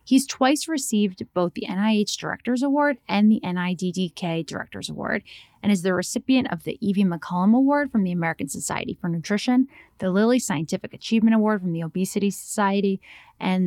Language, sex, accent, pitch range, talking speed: English, female, American, 180-230 Hz, 165 wpm